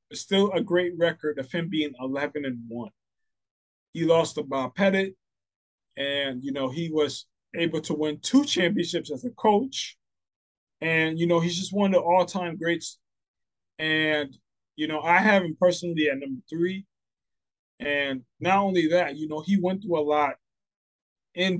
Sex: male